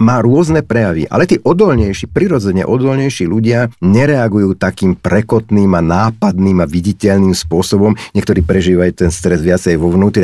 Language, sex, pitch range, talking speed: Slovak, male, 95-125 Hz, 140 wpm